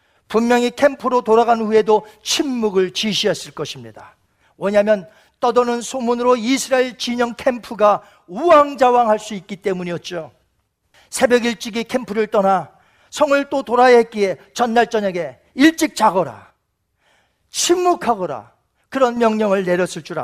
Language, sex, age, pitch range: Korean, male, 40-59, 200-275 Hz